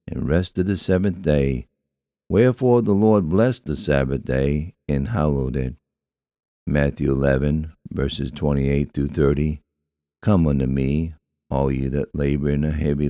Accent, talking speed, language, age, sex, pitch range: American, 135 wpm, English, 60-79, male, 70-85 Hz